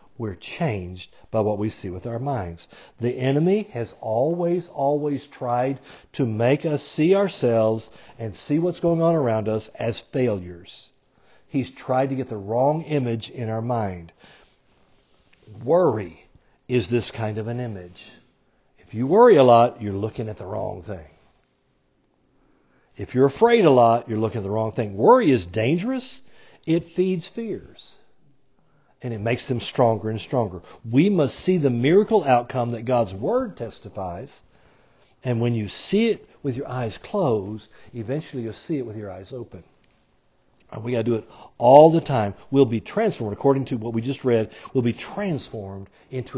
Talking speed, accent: 170 wpm, American